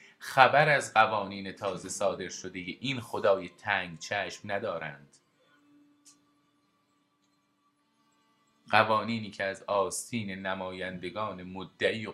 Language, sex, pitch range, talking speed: Persian, male, 90-115 Hz, 95 wpm